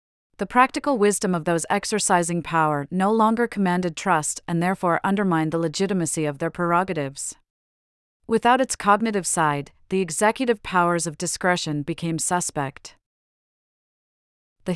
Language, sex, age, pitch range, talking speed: English, female, 40-59, 165-200 Hz, 125 wpm